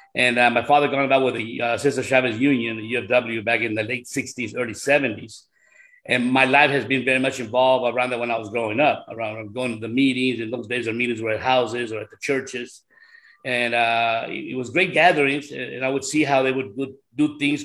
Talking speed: 240 wpm